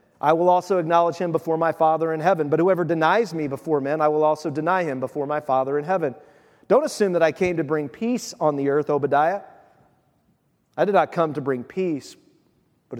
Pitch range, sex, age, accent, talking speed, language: 145-190 Hz, male, 40-59, American, 210 wpm, English